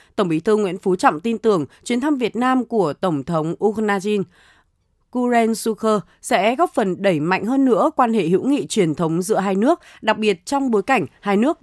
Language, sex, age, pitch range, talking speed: Vietnamese, female, 20-39, 185-245 Hz, 205 wpm